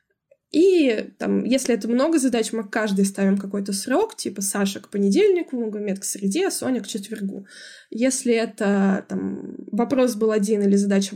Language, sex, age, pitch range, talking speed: Russian, female, 20-39, 200-260 Hz, 160 wpm